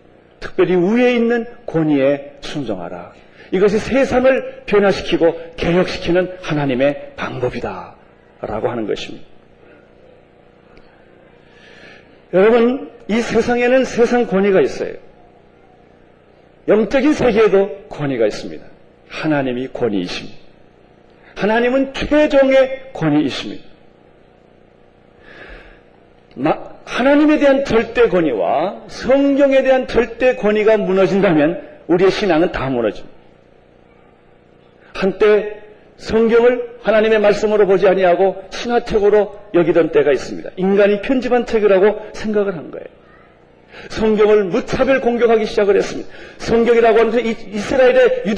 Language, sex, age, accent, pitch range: Korean, male, 40-59, native, 195-255 Hz